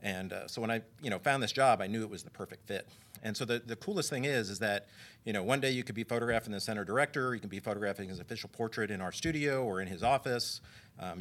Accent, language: American, English